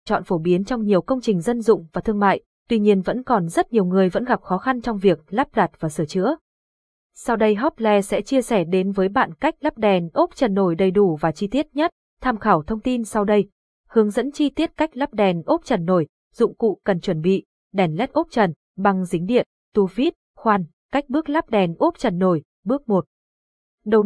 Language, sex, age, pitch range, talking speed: Vietnamese, female, 20-39, 185-240 Hz, 230 wpm